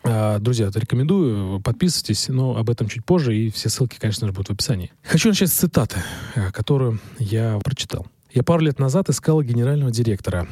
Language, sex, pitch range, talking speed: Russian, male, 110-150 Hz, 175 wpm